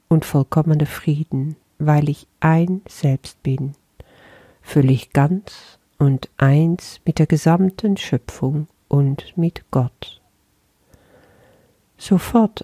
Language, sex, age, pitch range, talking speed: German, female, 50-69, 135-170 Hz, 95 wpm